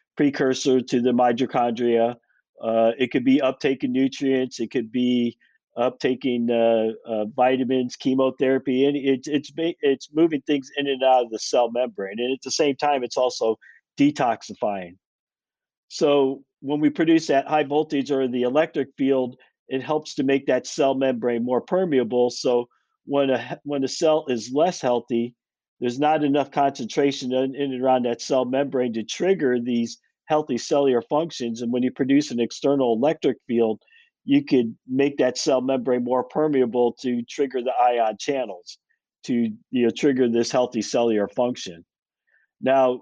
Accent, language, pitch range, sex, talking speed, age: American, English, 120-145 Hz, male, 155 wpm, 50-69